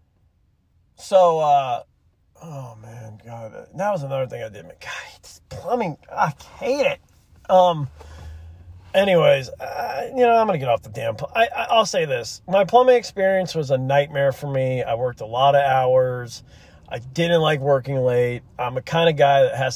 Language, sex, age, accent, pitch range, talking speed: English, male, 40-59, American, 130-190 Hz, 180 wpm